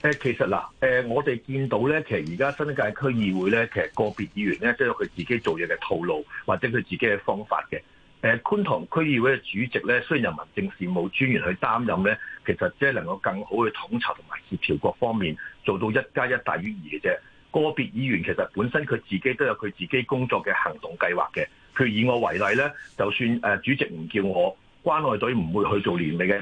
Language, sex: Chinese, male